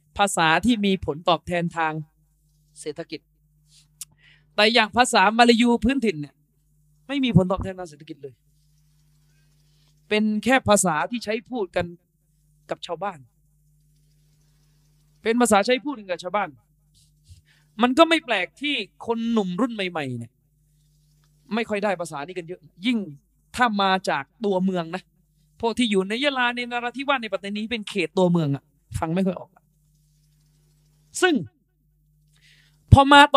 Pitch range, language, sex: 150-225 Hz, Thai, male